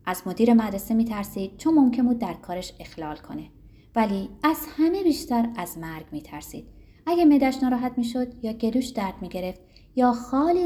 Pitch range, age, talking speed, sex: 175-250 Hz, 20-39, 160 wpm, female